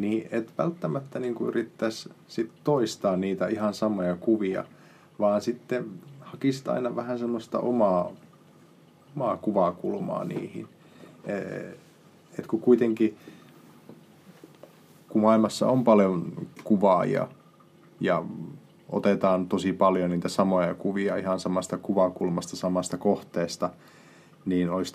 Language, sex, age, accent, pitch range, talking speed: Finnish, male, 30-49, native, 90-115 Hz, 105 wpm